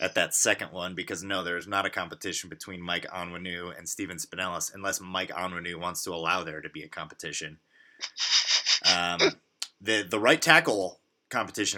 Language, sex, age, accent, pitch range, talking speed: English, male, 20-39, American, 100-130 Hz, 170 wpm